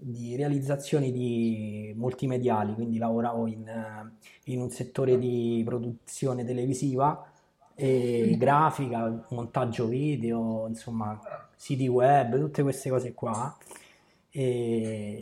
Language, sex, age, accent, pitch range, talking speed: Italian, male, 20-39, native, 120-140 Hz, 100 wpm